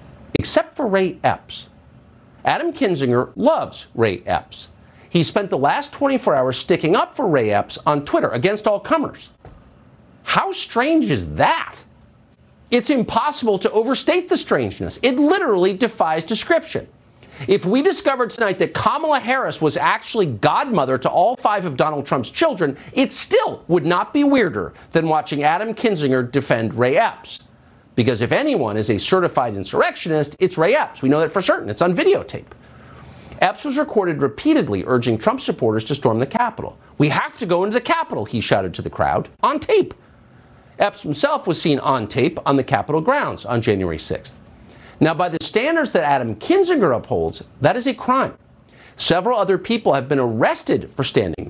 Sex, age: male, 50-69